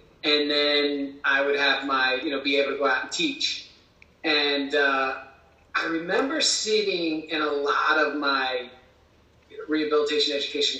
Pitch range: 140-185 Hz